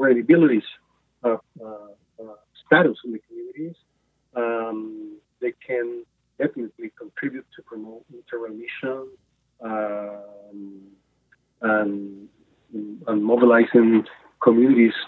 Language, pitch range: English, 110-155 Hz